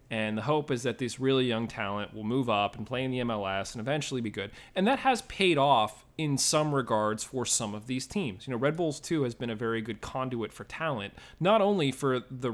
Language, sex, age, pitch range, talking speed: English, male, 30-49, 115-160 Hz, 245 wpm